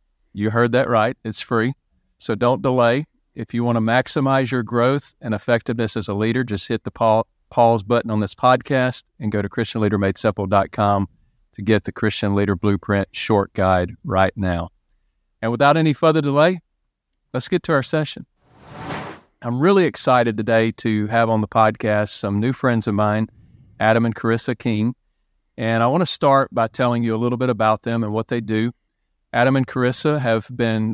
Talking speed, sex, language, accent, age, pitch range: 180 wpm, male, English, American, 40-59, 110-125 Hz